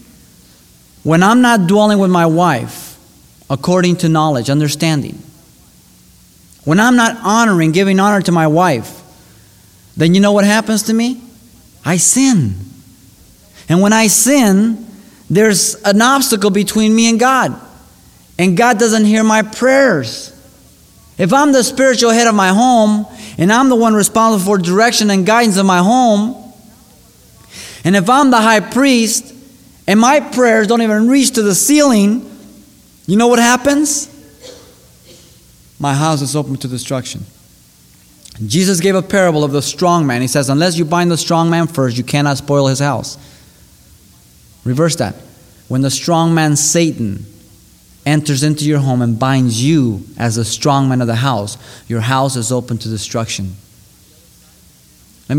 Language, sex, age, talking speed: English, male, 30-49, 155 wpm